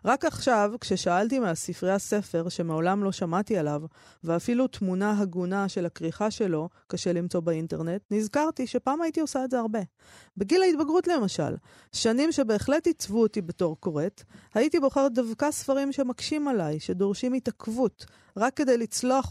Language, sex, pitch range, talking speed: Hebrew, female, 180-240 Hz, 140 wpm